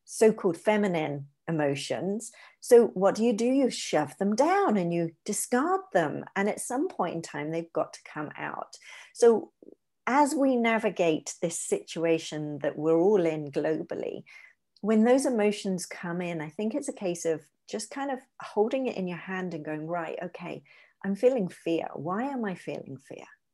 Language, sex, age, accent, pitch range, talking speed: English, female, 40-59, British, 160-215 Hz, 175 wpm